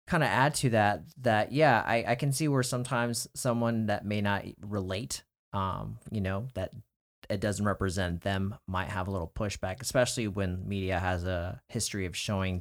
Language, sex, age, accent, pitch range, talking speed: English, male, 30-49, American, 90-115 Hz, 185 wpm